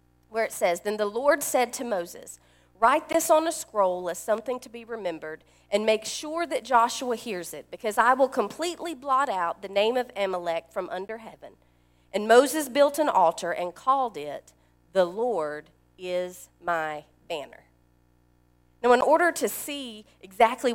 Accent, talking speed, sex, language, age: American, 170 wpm, female, English, 40-59